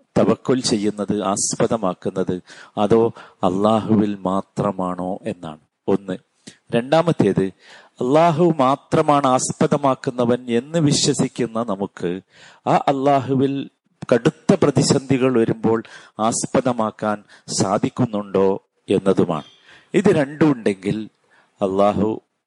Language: Malayalam